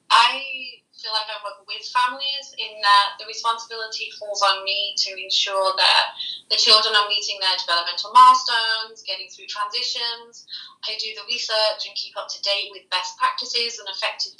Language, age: English, 20-39